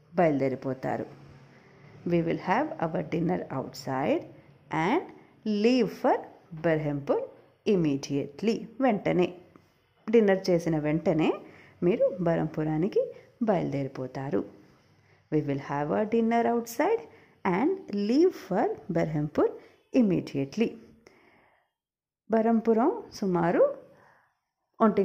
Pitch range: 160-230 Hz